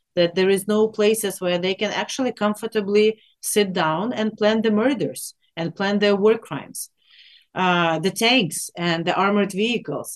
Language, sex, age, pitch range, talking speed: English, female, 40-59, 180-215 Hz, 165 wpm